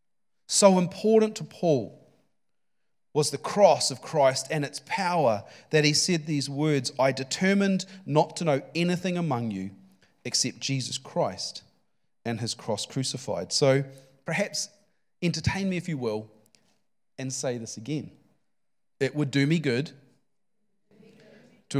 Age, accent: 40-59, Australian